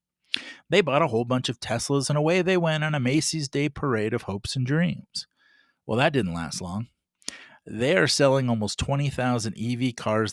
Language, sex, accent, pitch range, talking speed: English, male, American, 100-135 Hz, 185 wpm